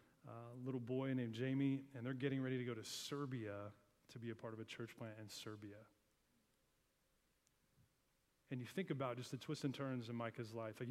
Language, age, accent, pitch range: English, 30-49, American, 120-140 Hz